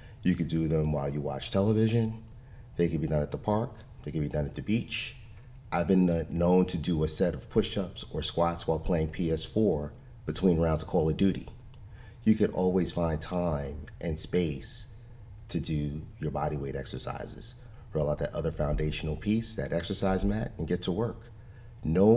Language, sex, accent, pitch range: English, male, American, 80-110 Hz